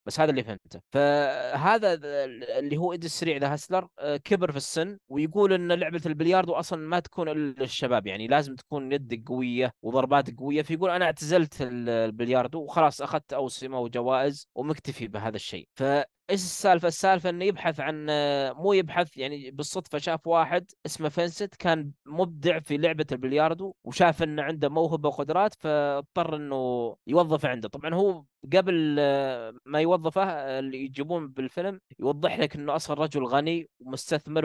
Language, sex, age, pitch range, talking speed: Arabic, male, 20-39, 140-175 Hz, 145 wpm